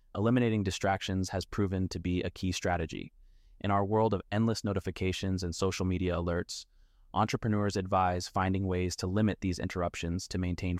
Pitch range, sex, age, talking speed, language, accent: 90-105 Hz, male, 20-39, 160 wpm, Portuguese, American